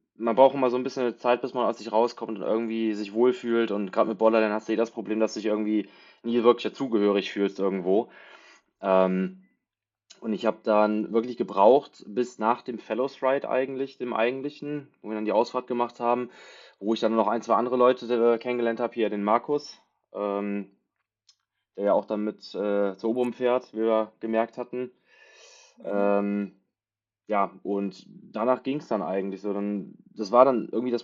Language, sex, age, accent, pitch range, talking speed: German, male, 20-39, German, 100-125 Hz, 190 wpm